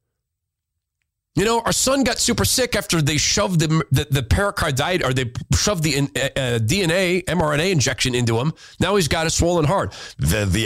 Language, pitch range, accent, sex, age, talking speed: English, 105-150 Hz, American, male, 40-59, 175 wpm